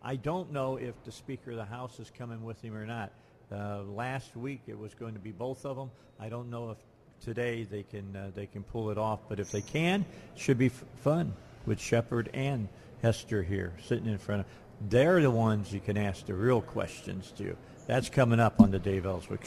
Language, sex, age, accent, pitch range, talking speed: English, male, 50-69, American, 105-130 Hz, 230 wpm